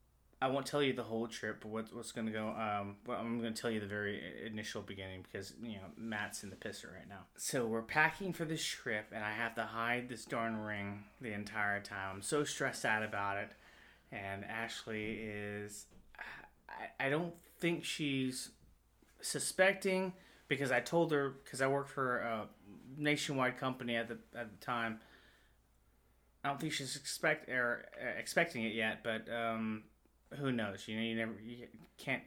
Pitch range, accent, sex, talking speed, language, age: 105-130 Hz, American, male, 185 wpm, English, 30-49